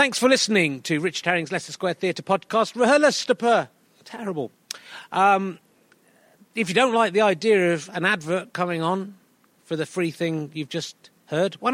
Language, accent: English, British